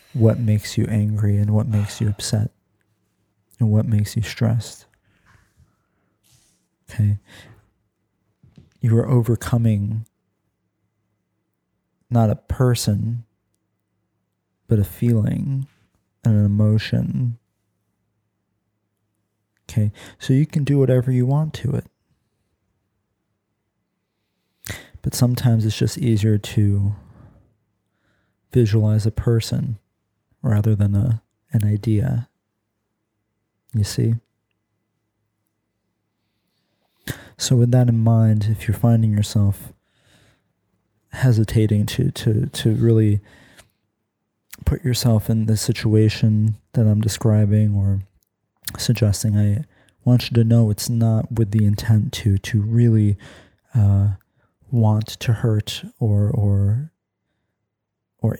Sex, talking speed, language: male, 100 wpm, English